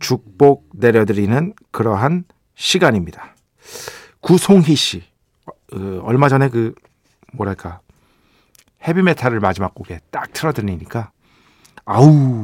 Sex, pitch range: male, 105-165 Hz